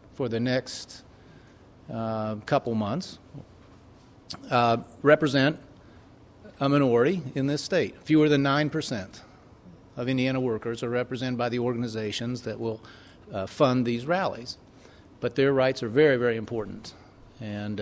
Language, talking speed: English, 130 wpm